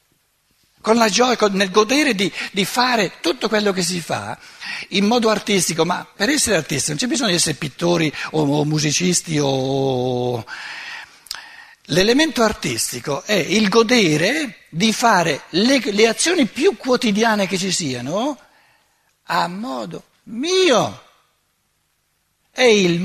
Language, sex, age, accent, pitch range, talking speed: Italian, male, 60-79, native, 165-230 Hz, 135 wpm